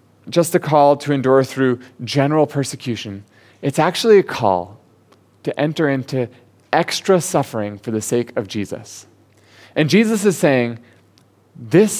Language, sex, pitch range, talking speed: English, male, 115-150 Hz, 135 wpm